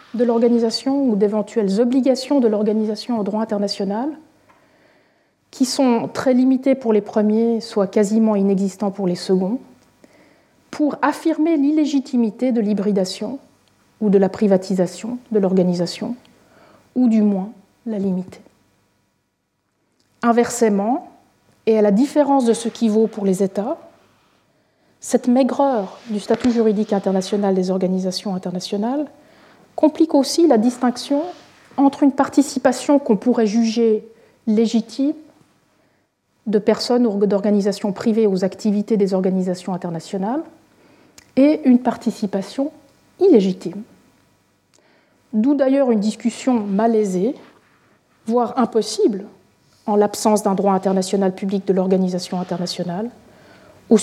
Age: 30-49